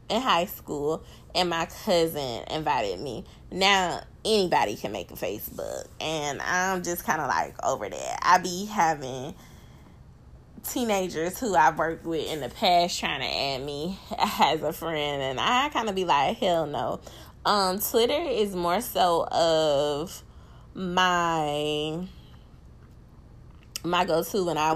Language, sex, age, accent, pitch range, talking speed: English, female, 20-39, American, 150-190 Hz, 140 wpm